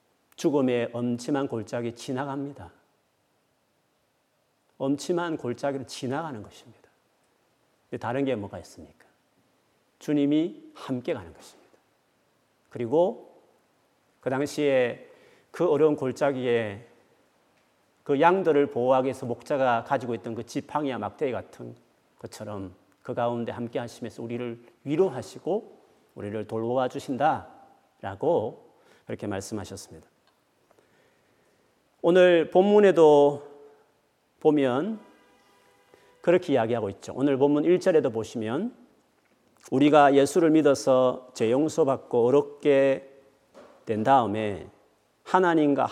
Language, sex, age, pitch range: Korean, male, 40-59, 120-155 Hz